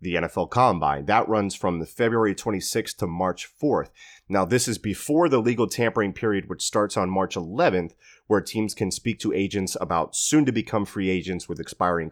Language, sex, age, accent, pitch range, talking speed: English, male, 30-49, American, 95-115 Hz, 195 wpm